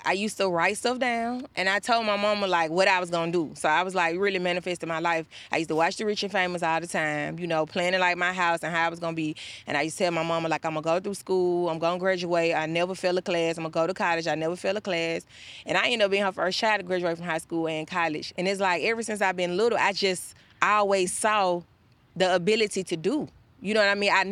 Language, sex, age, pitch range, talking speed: English, female, 20-39, 165-200 Hz, 290 wpm